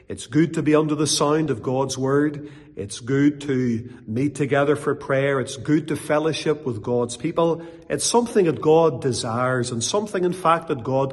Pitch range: 125-170 Hz